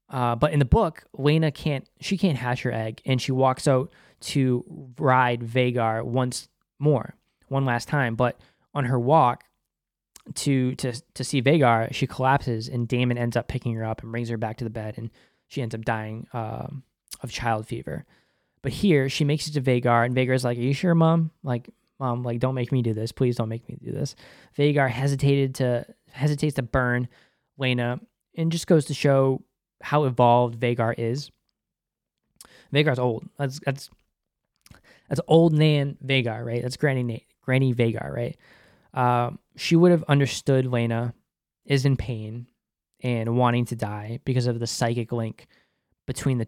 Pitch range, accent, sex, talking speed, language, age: 120-140 Hz, American, male, 180 wpm, English, 10-29